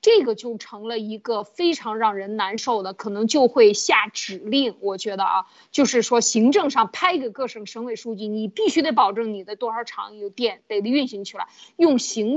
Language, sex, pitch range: Chinese, female, 220-320 Hz